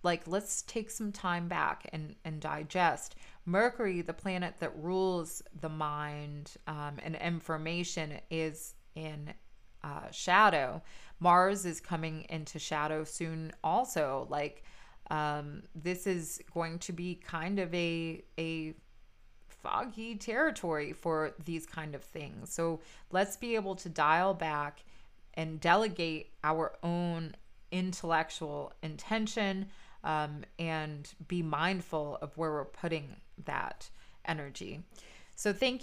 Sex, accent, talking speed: female, American, 120 wpm